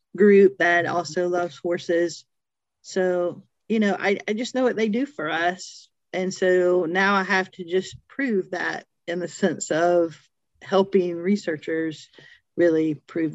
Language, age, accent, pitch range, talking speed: English, 40-59, American, 165-190 Hz, 155 wpm